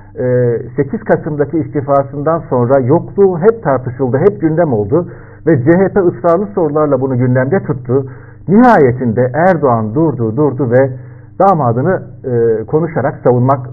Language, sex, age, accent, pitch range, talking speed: Turkish, male, 60-79, native, 120-165 Hz, 115 wpm